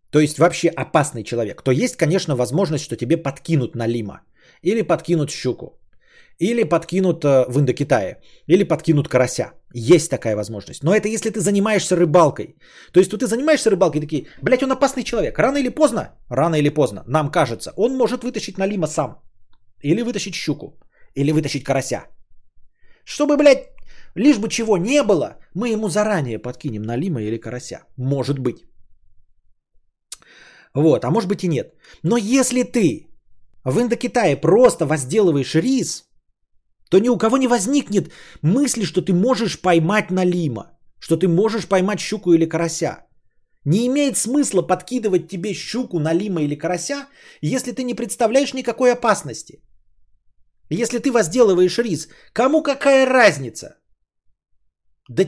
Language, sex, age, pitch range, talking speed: Bulgarian, male, 30-49, 135-225 Hz, 150 wpm